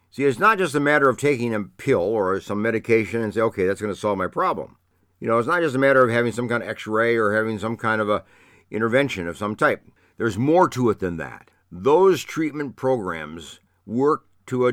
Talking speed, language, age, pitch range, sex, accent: 230 wpm, English, 60-79, 95-130 Hz, male, American